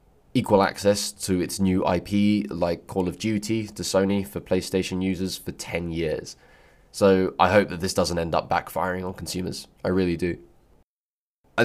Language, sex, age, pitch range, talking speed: English, male, 20-39, 85-95 Hz, 170 wpm